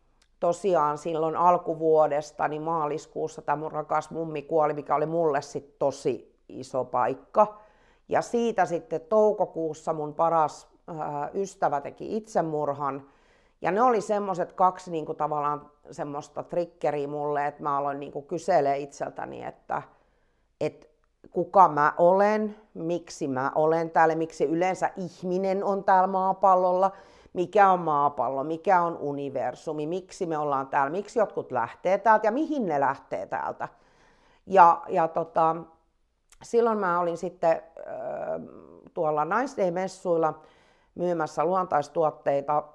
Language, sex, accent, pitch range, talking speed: Finnish, female, native, 150-185 Hz, 125 wpm